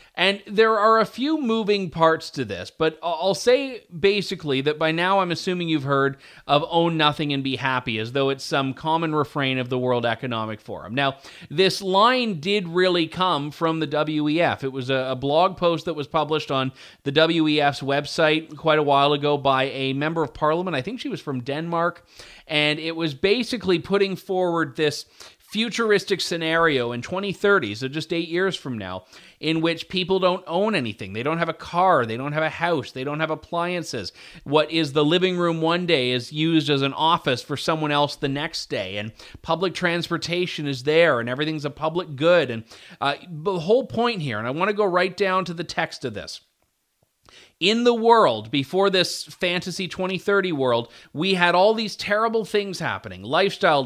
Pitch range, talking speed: 140-185 Hz, 195 wpm